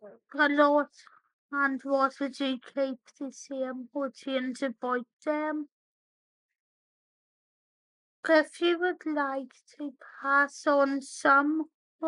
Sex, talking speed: female, 105 wpm